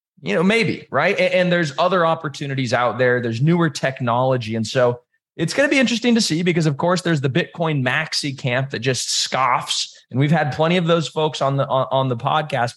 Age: 20-39